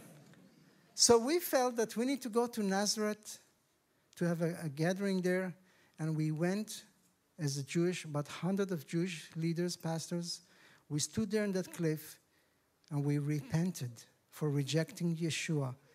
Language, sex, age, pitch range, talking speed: English, male, 50-69, 160-195 Hz, 150 wpm